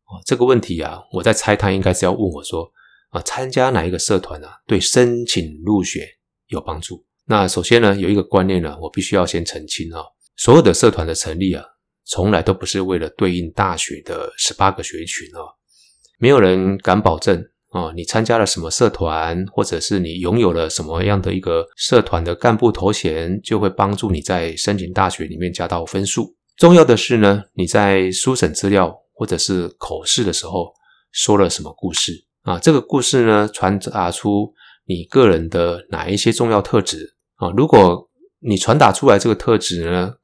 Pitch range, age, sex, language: 90-110 Hz, 20-39, male, Chinese